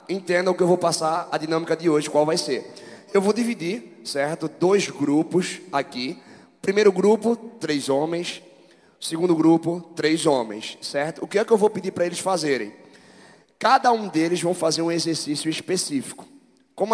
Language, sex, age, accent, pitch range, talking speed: Portuguese, male, 20-39, Brazilian, 160-210 Hz, 170 wpm